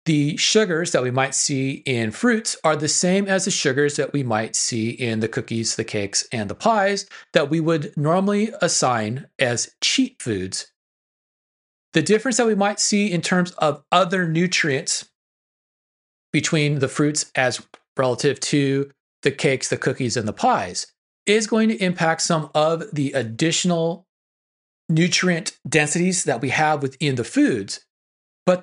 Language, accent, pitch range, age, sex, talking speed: English, American, 135-185 Hz, 30-49, male, 155 wpm